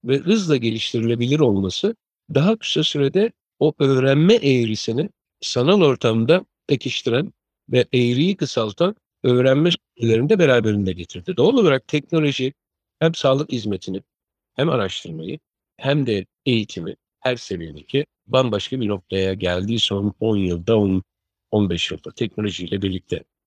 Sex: male